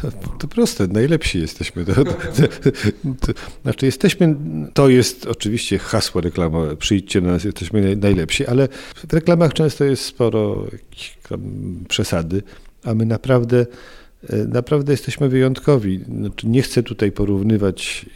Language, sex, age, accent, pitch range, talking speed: Polish, male, 50-69, native, 95-120 Hz, 105 wpm